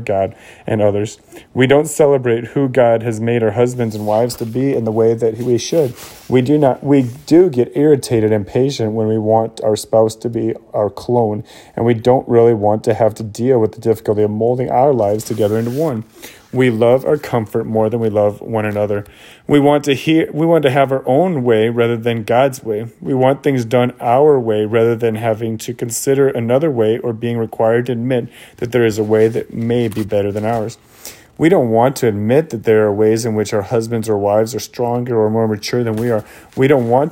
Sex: male